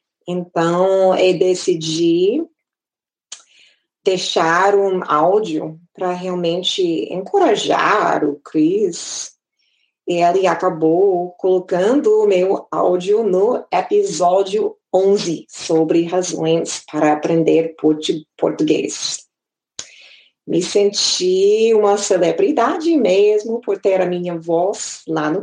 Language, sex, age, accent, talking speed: Portuguese, female, 20-39, Brazilian, 90 wpm